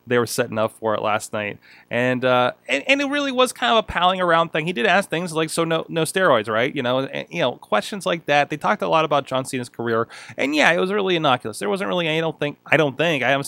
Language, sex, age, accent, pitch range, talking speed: English, male, 20-39, American, 120-160 Hz, 295 wpm